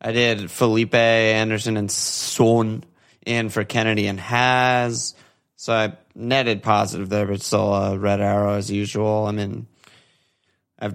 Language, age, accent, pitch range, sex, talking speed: English, 20-39, American, 100-115 Hz, male, 140 wpm